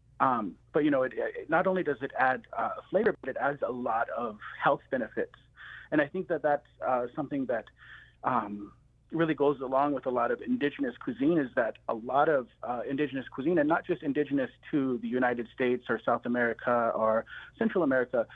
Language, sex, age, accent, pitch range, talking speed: English, male, 40-59, American, 120-165 Hz, 195 wpm